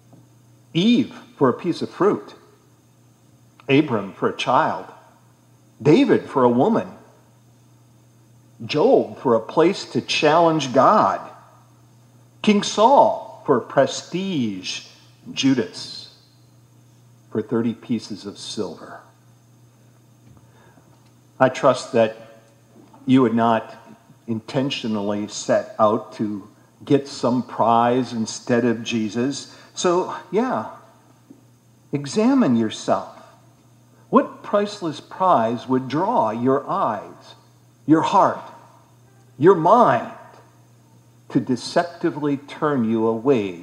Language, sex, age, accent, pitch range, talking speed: English, male, 50-69, American, 100-140 Hz, 90 wpm